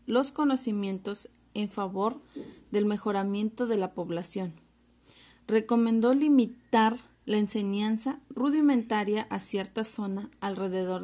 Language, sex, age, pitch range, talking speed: Spanish, female, 30-49, 195-245 Hz, 100 wpm